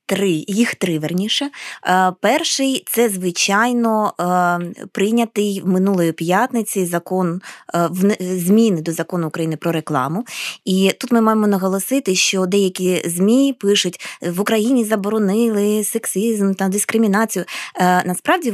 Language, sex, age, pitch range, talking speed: English, female, 20-39, 180-235 Hz, 120 wpm